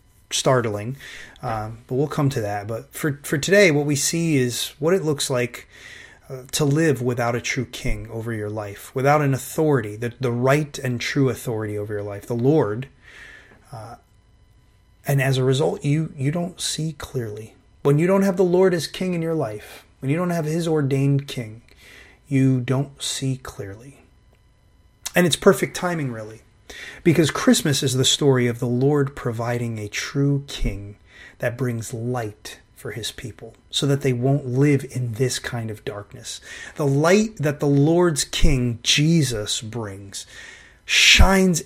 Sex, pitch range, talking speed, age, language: male, 115-145 Hz, 170 wpm, 30-49, English